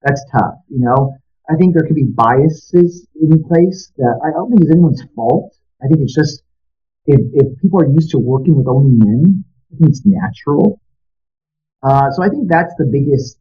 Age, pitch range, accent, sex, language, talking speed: 40-59, 110-165 Hz, American, male, English, 195 wpm